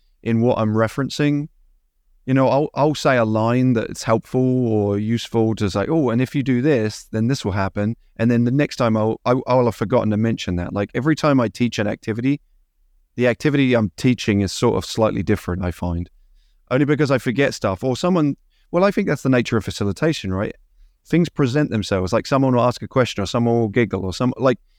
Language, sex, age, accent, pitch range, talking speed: English, male, 30-49, British, 100-125 Hz, 220 wpm